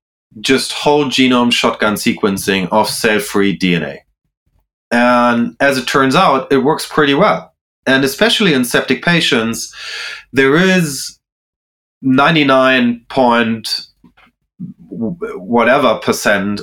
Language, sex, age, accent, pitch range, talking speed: English, male, 30-49, German, 105-140 Hz, 100 wpm